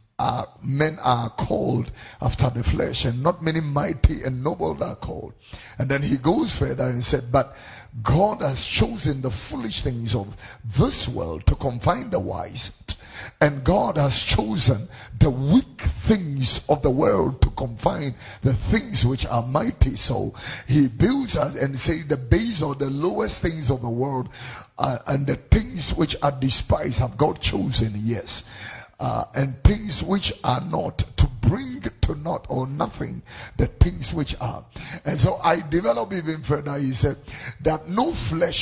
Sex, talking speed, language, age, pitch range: male, 165 wpm, English, 50-69, 115-155 Hz